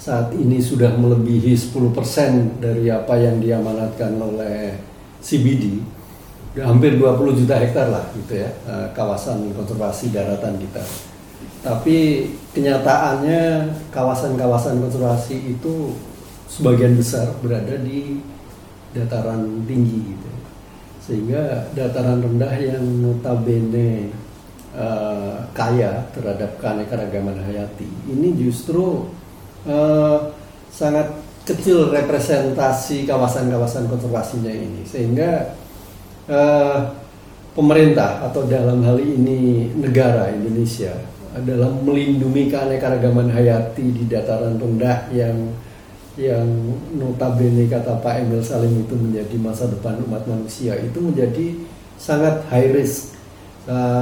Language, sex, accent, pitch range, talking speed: Indonesian, male, native, 110-135 Hz, 100 wpm